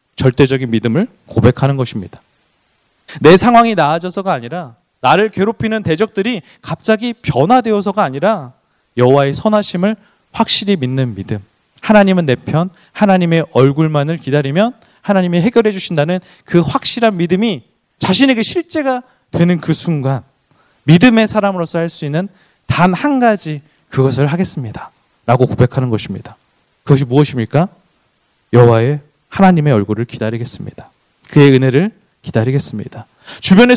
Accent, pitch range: native, 135-205 Hz